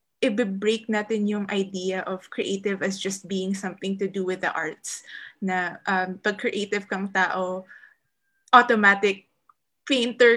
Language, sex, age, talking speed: Filipino, female, 20-39, 125 wpm